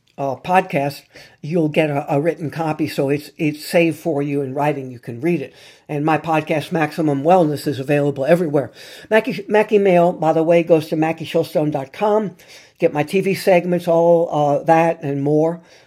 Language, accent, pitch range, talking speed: English, American, 140-170 Hz, 175 wpm